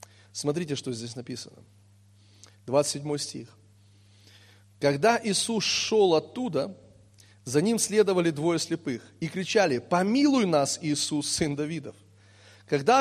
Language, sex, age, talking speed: Russian, male, 30-49, 105 wpm